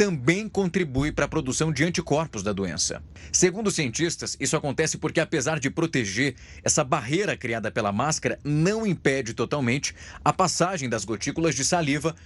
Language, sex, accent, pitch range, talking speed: Portuguese, male, Brazilian, 125-175 Hz, 155 wpm